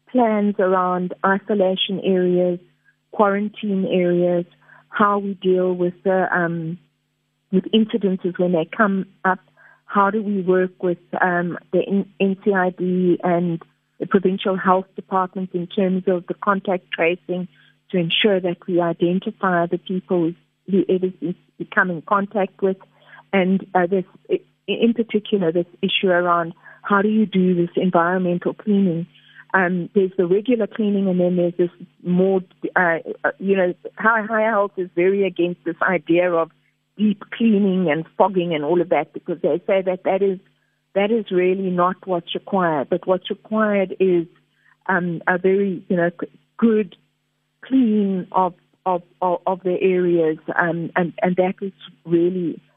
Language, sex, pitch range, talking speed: English, female, 175-195 Hz, 150 wpm